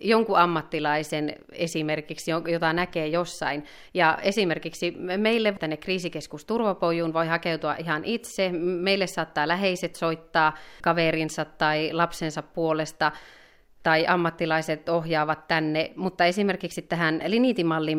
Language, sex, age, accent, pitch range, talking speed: Finnish, female, 30-49, native, 155-185 Hz, 105 wpm